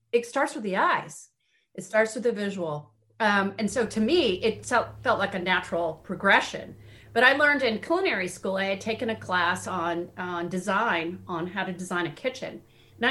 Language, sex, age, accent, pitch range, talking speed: English, female, 30-49, American, 170-215 Hz, 190 wpm